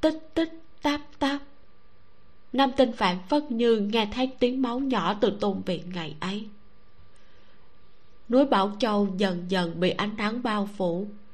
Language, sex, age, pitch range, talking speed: Vietnamese, female, 20-39, 165-230 Hz, 155 wpm